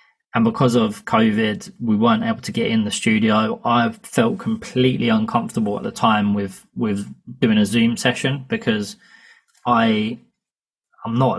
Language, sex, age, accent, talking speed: English, male, 20-39, British, 150 wpm